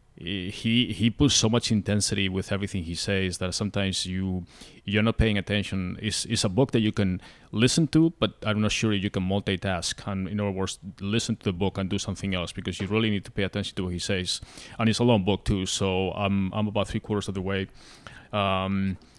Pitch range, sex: 95-105 Hz, male